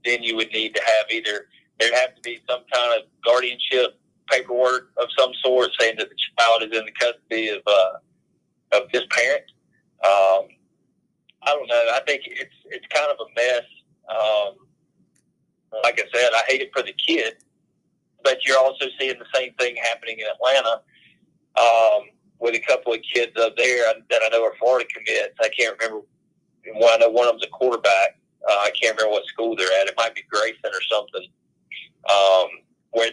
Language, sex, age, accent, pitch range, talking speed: English, male, 40-59, American, 110-125 Hz, 190 wpm